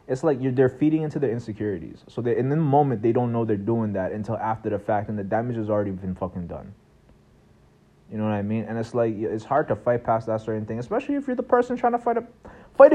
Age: 30-49